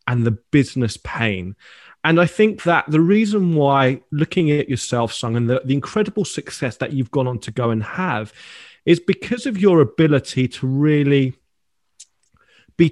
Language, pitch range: English, 120-150 Hz